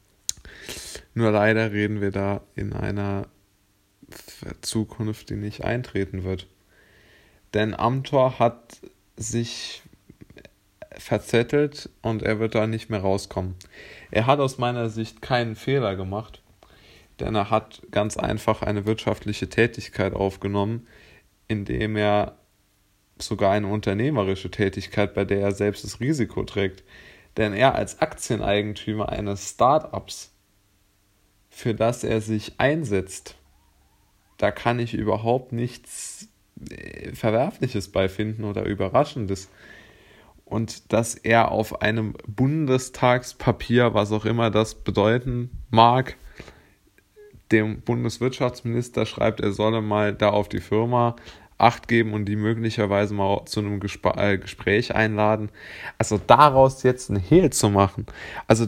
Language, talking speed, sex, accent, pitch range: German, 115 wpm, male, German, 100-115 Hz